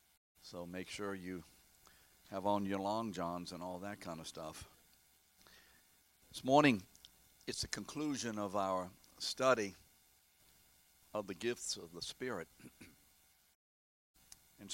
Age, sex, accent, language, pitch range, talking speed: 60-79, male, American, English, 75-100 Hz, 120 wpm